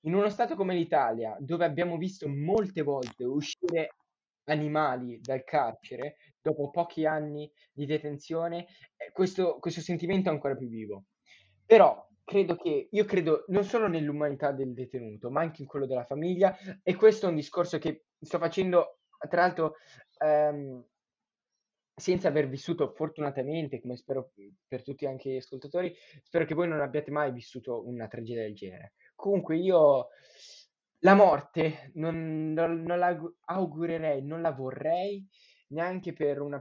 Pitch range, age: 135-170 Hz, 20-39